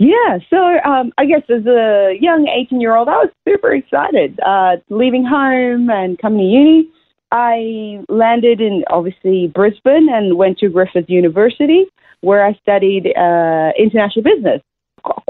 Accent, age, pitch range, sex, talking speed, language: American, 30-49, 180-245 Hz, female, 145 wpm, English